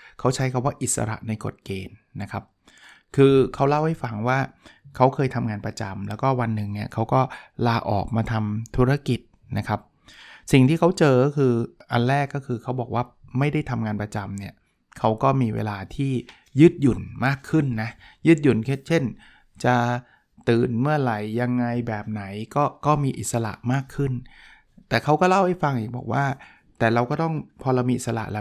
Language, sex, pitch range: Thai, male, 110-135 Hz